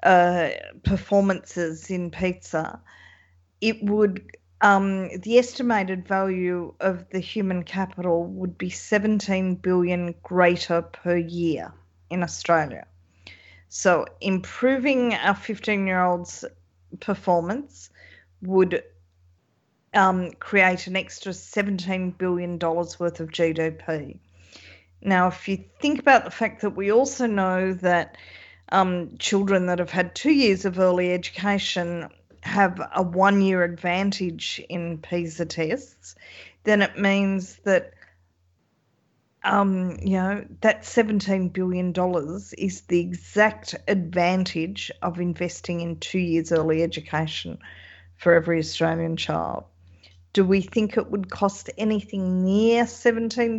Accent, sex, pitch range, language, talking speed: Australian, female, 165-195 Hz, English, 120 wpm